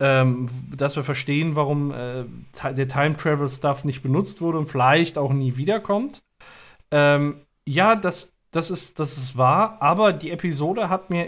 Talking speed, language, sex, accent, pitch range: 150 wpm, German, male, German, 130-165 Hz